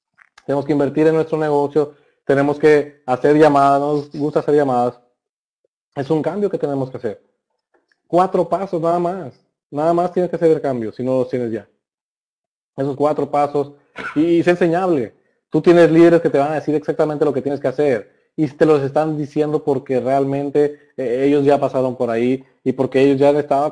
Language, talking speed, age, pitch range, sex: Spanish, 190 wpm, 30-49, 130-155 Hz, male